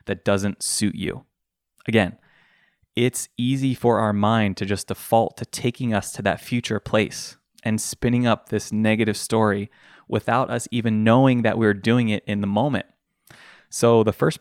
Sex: male